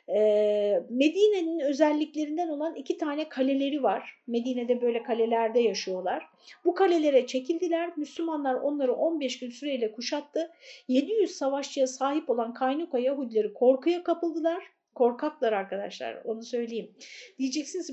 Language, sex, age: Turkish, female, 50-69